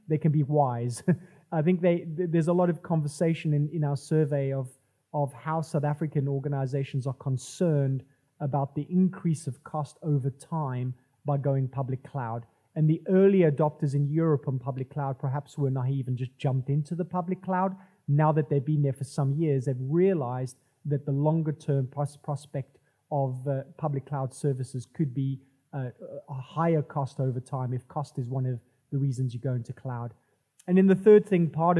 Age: 30-49